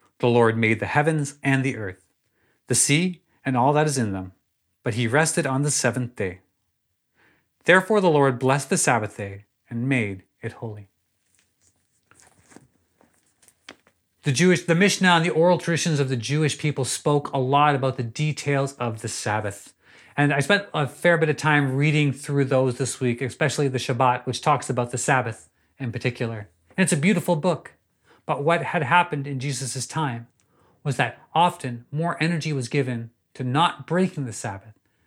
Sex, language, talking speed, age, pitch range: male, English, 175 wpm, 40-59, 115-155 Hz